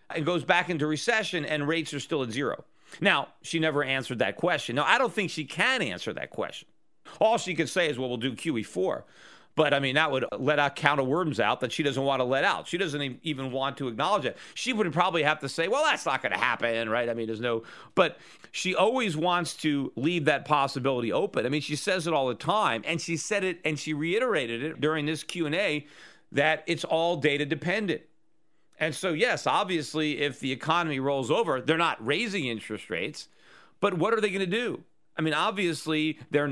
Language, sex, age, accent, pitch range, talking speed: English, male, 40-59, American, 135-170 Hz, 220 wpm